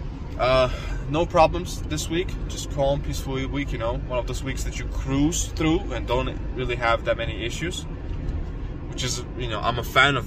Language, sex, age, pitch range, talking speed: English, male, 10-29, 80-115 Hz, 200 wpm